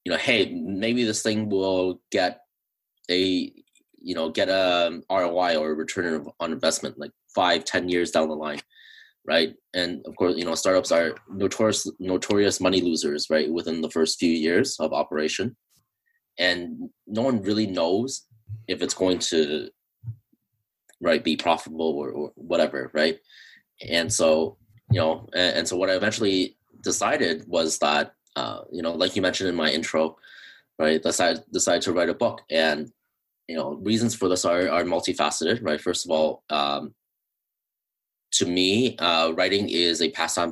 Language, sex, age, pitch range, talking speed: English, male, 20-39, 80-110 Hz, 165 wpm